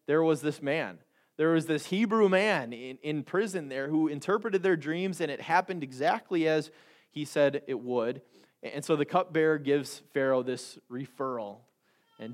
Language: English